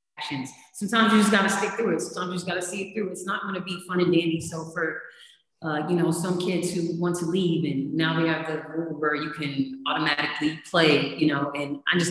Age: 30-49